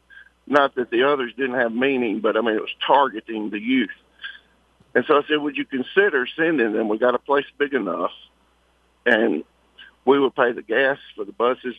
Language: English